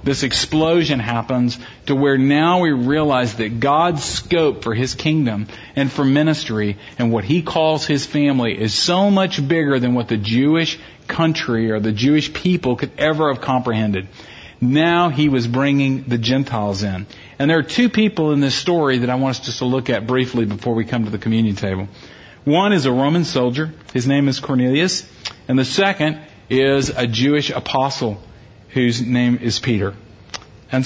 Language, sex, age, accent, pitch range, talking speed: English, male, 40-59, American, 115-155 Hz, 180 wpm